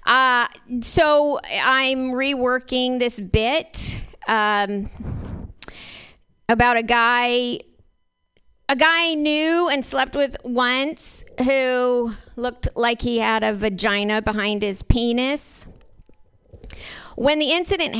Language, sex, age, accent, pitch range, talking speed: English, female, 40-59, American, 235-280 Hz, 100 wpm